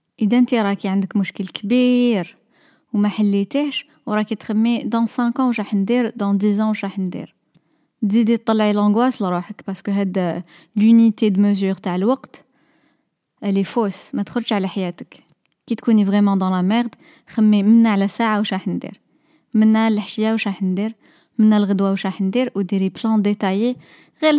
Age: 20-39